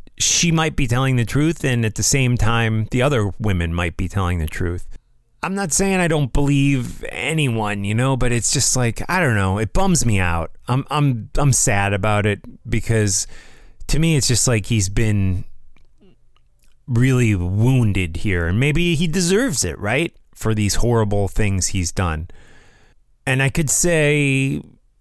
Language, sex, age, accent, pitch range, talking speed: English, male, 30-49, American, 100-130 Hz, 175 wpm